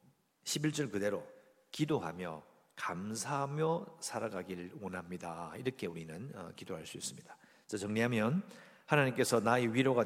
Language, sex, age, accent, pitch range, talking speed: English, male, 50-69, Korean, 90-115 Hz, 95 wpm